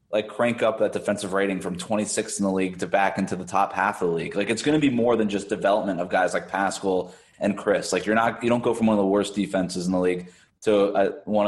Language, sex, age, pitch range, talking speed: English, male, 20-39, 100-120 Hz, 270 wpm